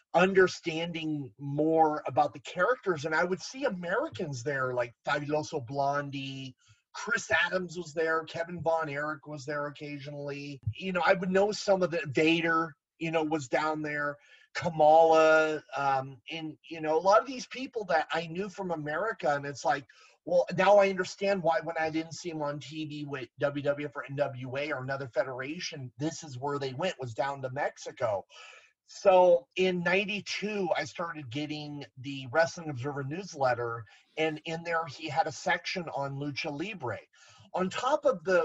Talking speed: 170 wpm